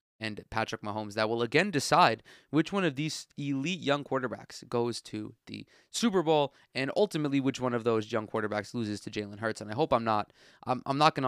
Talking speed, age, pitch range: 205 wpm, 20-39, 110-140 Hz